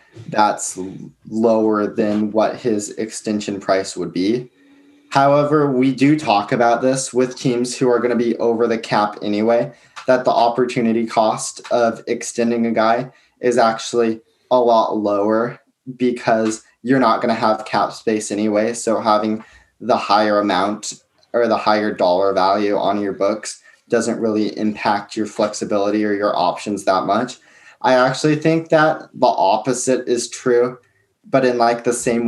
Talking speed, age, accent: 155 wpm, 10-29, American